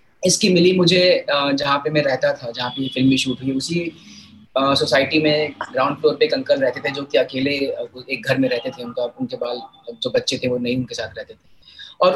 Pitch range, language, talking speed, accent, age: 130-165 Hz, Hindi, 145 wpm, native, 30-49